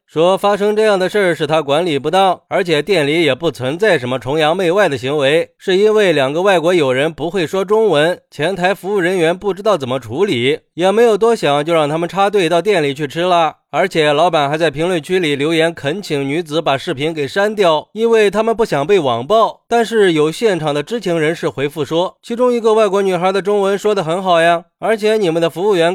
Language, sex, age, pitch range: Chinese, male, 20-39, 155-215 Hz